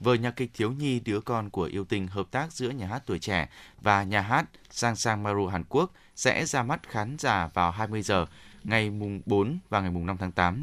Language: Vietnamese